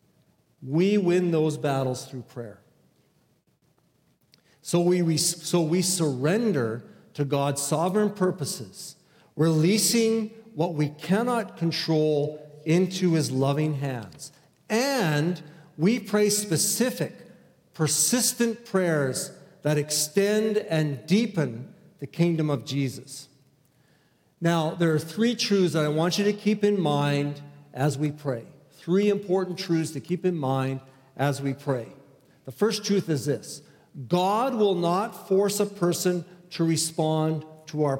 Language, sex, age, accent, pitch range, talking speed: English, male, 50-69, American, 145-185 Hz, 125 wpm